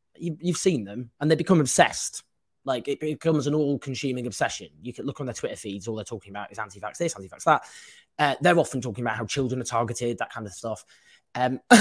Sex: male